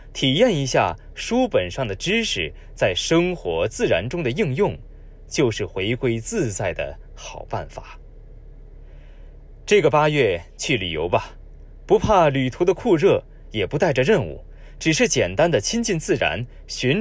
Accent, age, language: native, 20-39, Chinese